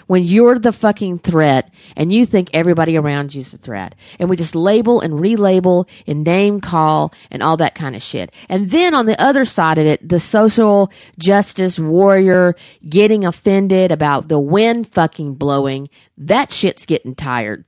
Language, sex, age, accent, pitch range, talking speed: English, female, 40-59, American, 160-220 Hz, 175 wpm